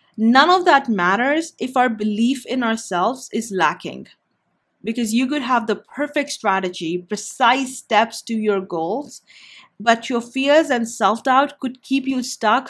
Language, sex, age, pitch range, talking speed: English, female, 30-49, 205-250 Hz, 150 wpm